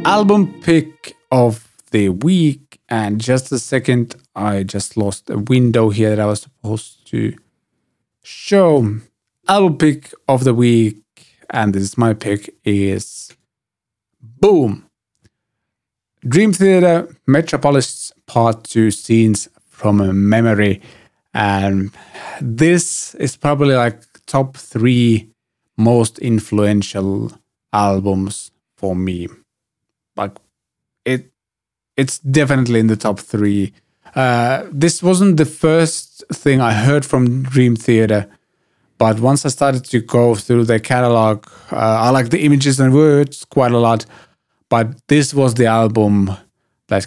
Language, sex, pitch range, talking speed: English, male, 105-140 Hz, 125 wpm